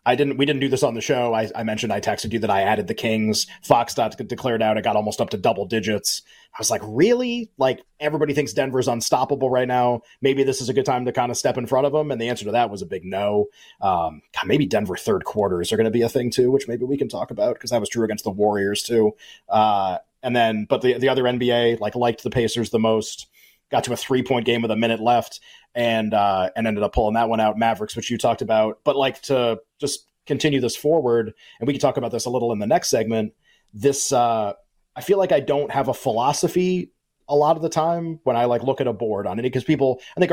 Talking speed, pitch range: 260 wpm, 110-135 Hz